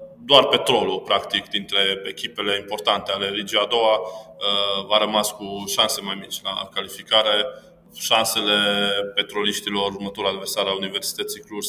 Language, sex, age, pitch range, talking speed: Romanian, male, 20-39, 100-125 Hz, 135 wpm